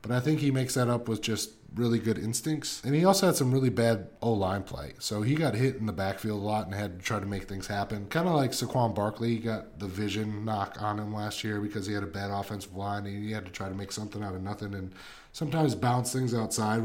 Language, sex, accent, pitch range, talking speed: English, male, American, 105-130 Hz, 265 wpm